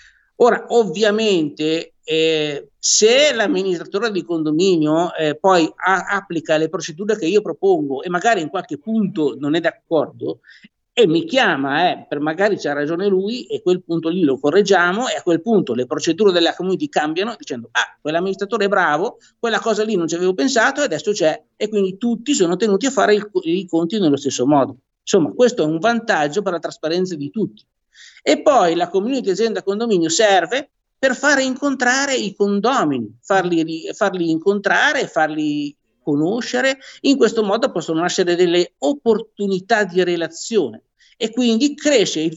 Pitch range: 170-235 Hz